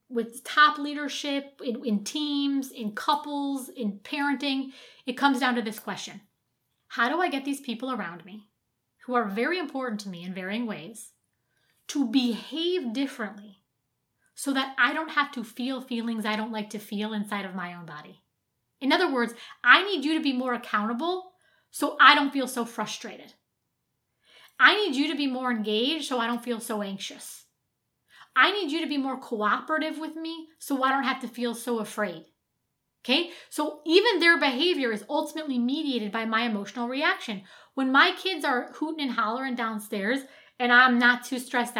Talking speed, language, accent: 180 wpm, English, American